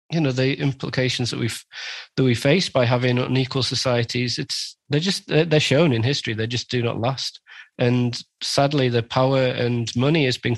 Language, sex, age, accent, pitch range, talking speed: English, male, 20-39, British, 125-140 Hz, 185 wpm